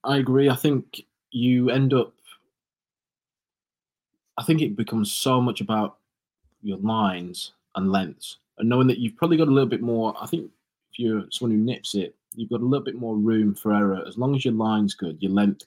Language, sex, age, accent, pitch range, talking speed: English, male, 20-39, British, 100-115 Hz, 205 wpm